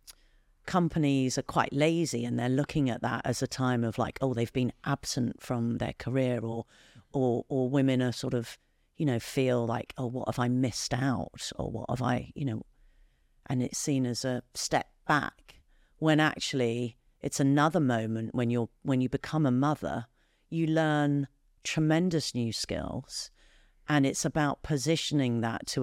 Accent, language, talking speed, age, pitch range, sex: British, English, 170 wpm, 40-59, 120-150 Hz, female